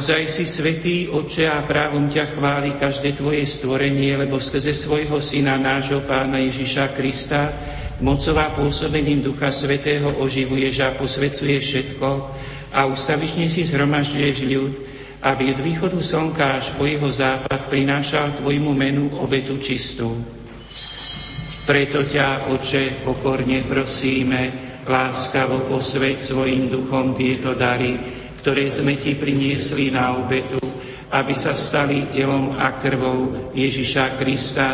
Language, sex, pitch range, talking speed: Slovak, male, 130-140 Hz, 120 wpm